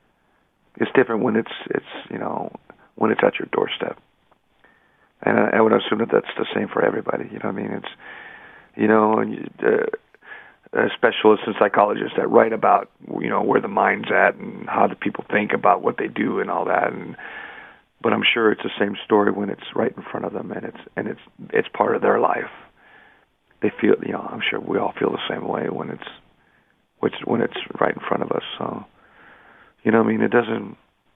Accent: American